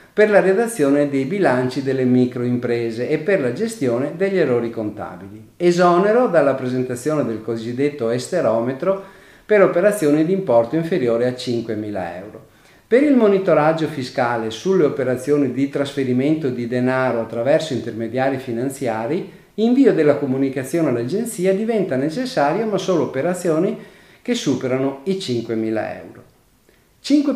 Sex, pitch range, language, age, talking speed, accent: male, 125-190 Hz, Italian, 50-69, 125 wpm, native